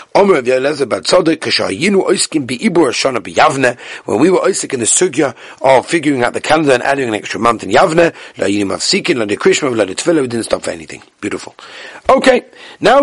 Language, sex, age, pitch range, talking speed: English, male, 40-59, 150-230 Hz, 125 wpm